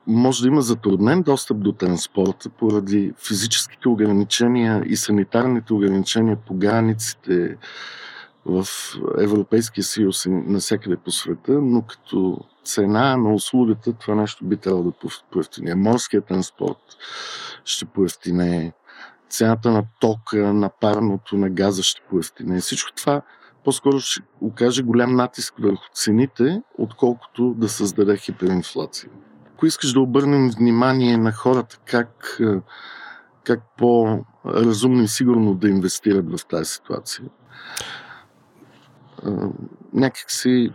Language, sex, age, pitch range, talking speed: English, male, 50-69, 100-120 Hz, 115 wpm